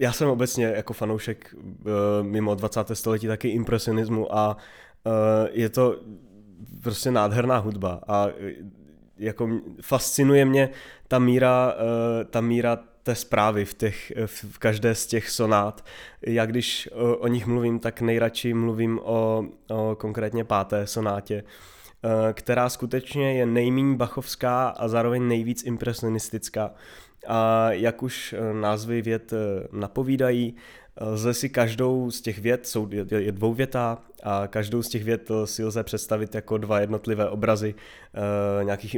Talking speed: 125 wpm